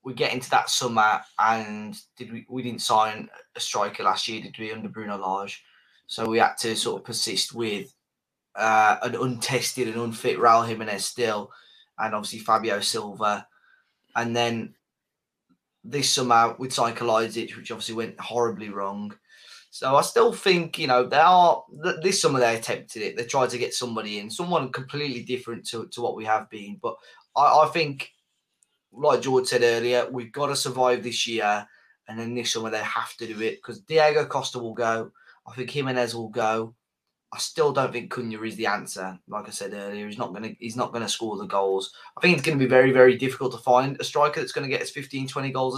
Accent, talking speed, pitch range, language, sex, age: British, 200 wpm, 110-130 Hz, English, male, 10-29